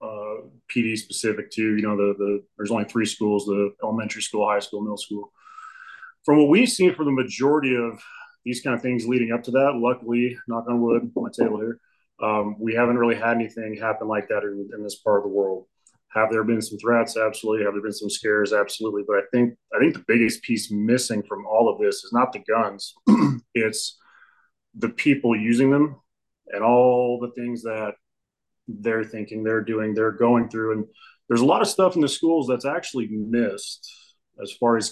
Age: 30-49